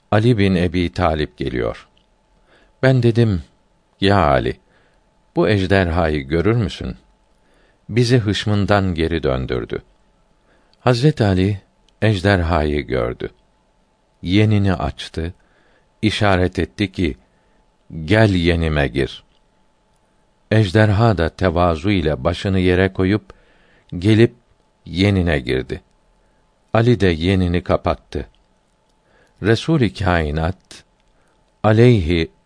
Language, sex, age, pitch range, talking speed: Turkish, male, 50-69, 80-105 Hz, 85 wpm